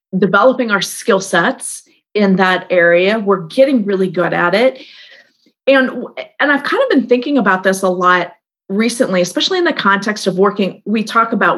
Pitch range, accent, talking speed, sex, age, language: 190-255 Hz, American, 175 wpm, female, 30-49, English